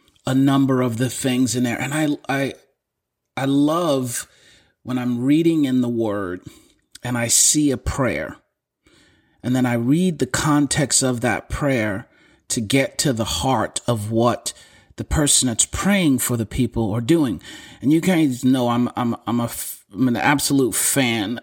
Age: 40-59